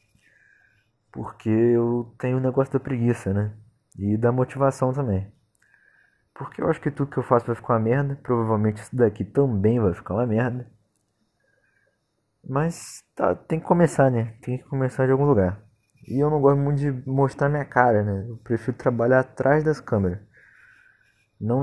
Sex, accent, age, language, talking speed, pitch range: male, Brazilian, 20-39, Portuguese, 165 wpm, 100-125 Hz